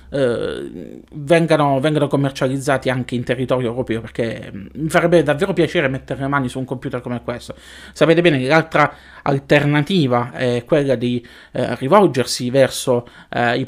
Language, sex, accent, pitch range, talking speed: Italian, male, native, 120-145 Hz, 130 wpm